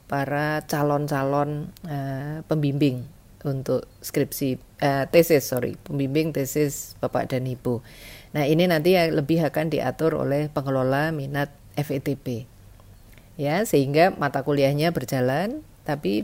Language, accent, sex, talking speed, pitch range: Indonesian, native, female, 115 wpm, 130-155 Hz